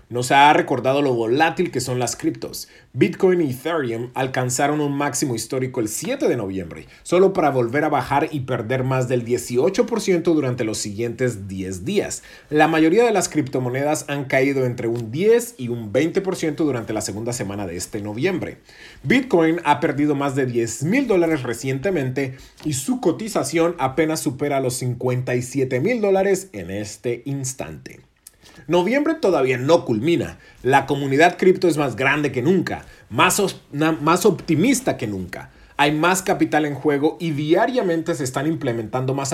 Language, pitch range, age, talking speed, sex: English, 125-170 Hz, 40-59, 160 wpm, male